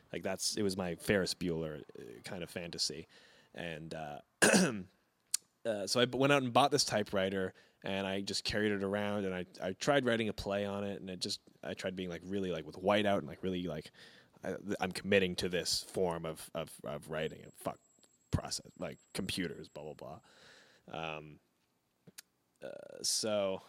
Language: English